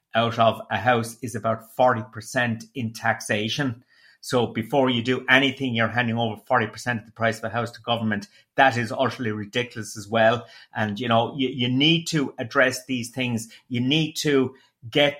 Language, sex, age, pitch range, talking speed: English, male, 30-49, 115-130 Hz, 180 wpm